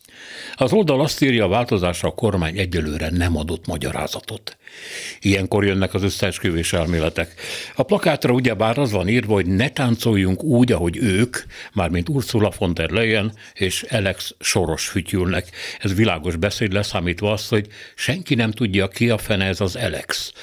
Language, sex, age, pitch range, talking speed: Hungarian, male, 60-79, 90-115 Hz, 155 wpm